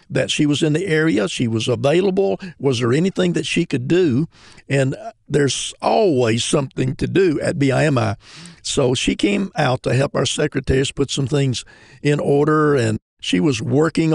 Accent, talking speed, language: American, 175 wpm, English